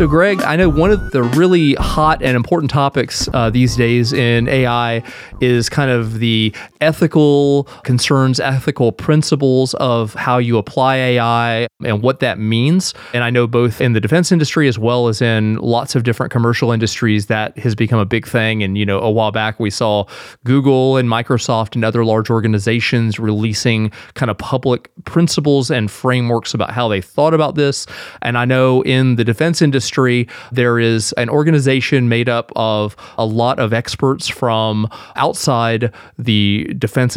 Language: English